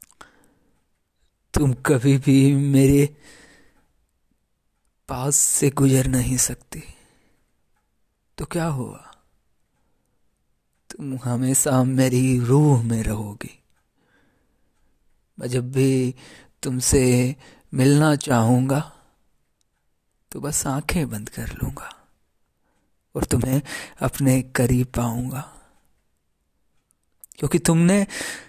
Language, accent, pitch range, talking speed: Hindi, native, 115-140 Hz, 80 wpm